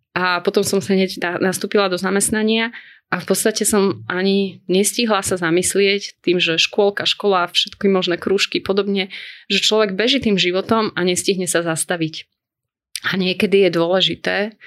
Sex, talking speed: female, 145 wpm